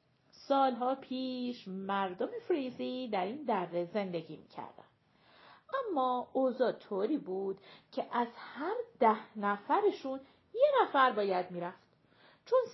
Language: Persian